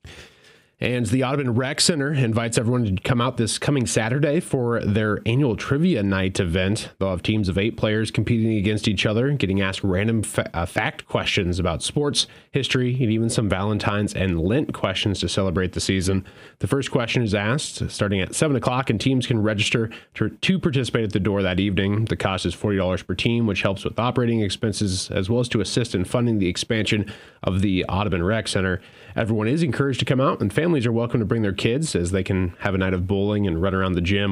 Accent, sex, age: American, male, 30-49